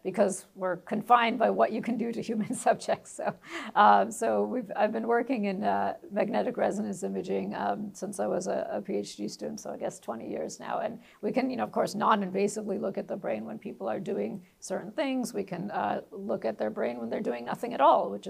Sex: female